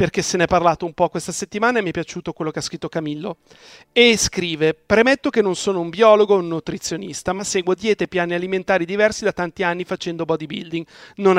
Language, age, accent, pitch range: Italian, 40-59, native, 170-210 Hz